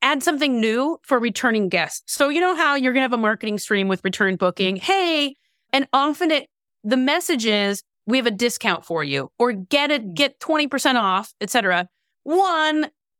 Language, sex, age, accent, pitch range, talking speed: English, female, 30-49, American, 210-290 Hz, 190 wpm